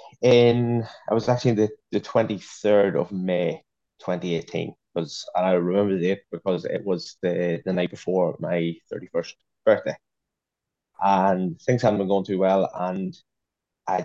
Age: 20-39